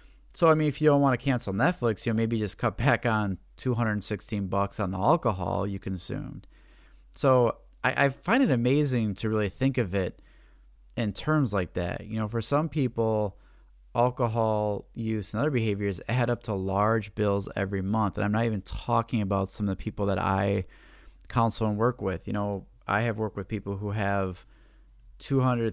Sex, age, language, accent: male, 30-49, English, American